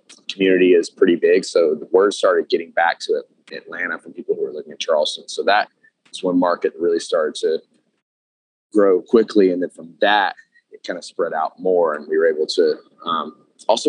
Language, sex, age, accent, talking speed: English, male, 20-39, American, 195 wpm